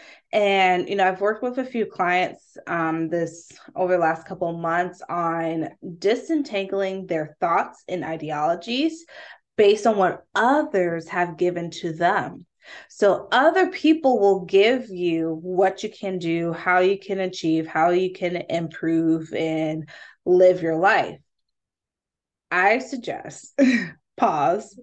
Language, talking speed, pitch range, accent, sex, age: English, 135 wpm, 170-220 Hz, American, female, 20-39